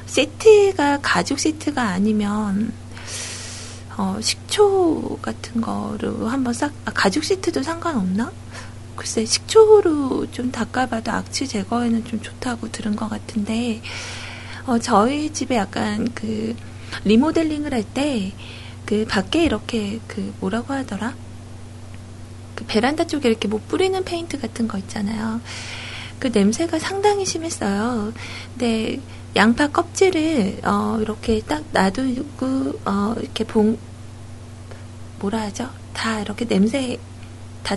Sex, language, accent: female, Korean, native